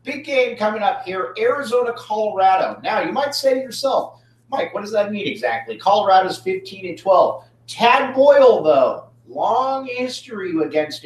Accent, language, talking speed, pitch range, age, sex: American, English, 150 wpm, 130-215 Hz, 40-59, male